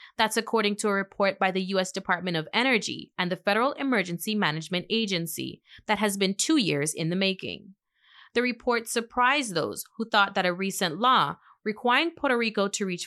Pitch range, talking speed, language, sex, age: 180-235 Hz, 185 wpm, English, female, 30-49